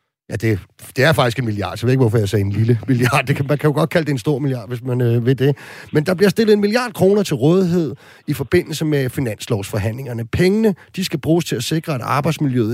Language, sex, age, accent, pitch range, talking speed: Danish, male, 30-49, native, 115-150 Hz, 240 wpm